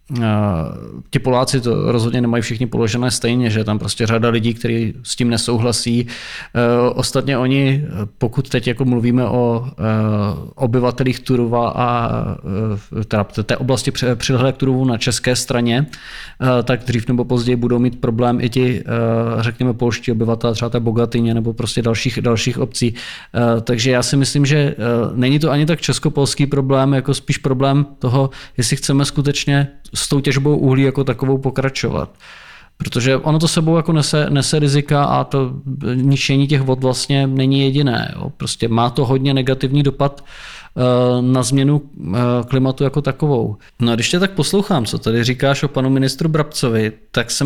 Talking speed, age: 155 wpm, 20-39